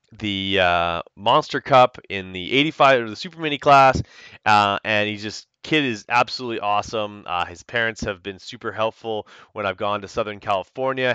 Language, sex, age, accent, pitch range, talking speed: English, male, 30-49, American, 95-120 Hz, 180 wpm